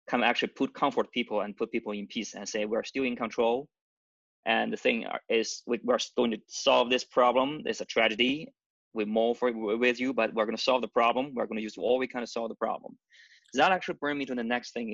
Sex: male